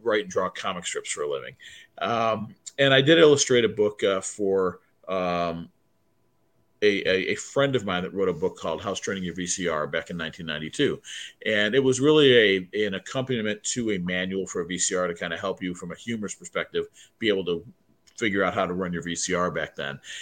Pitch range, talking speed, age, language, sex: 95-130 Hz, 210 wpm, 40-59, English, male